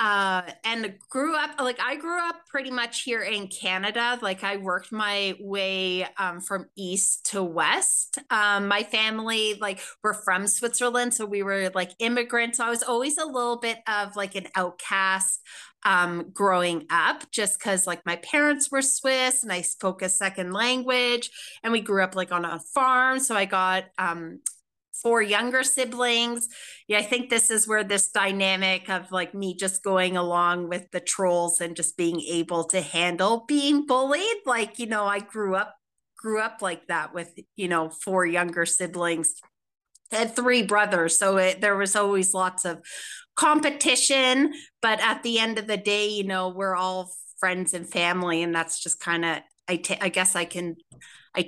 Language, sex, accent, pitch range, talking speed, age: English, female, American, 180-235 Hz, 180 wpm, 30-49